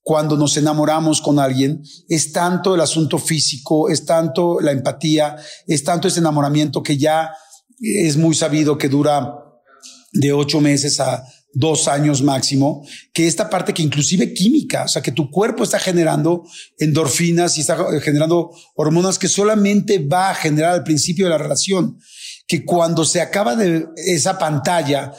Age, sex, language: 40-59, male, Spanish